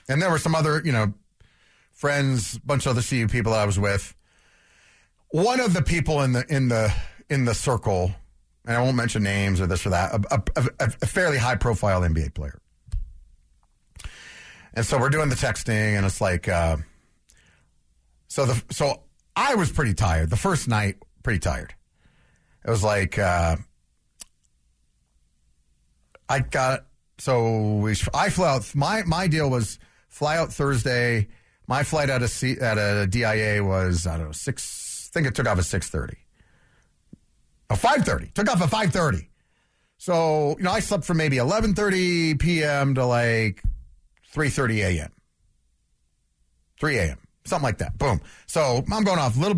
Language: English